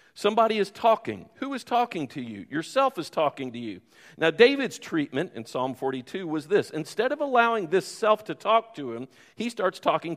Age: 50-69